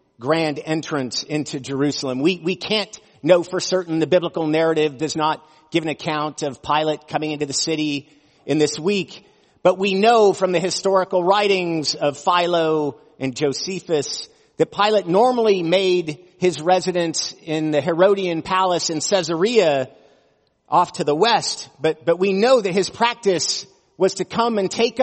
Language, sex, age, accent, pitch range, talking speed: English, male, 50-69, American, 155-205 Hz, 160 wpm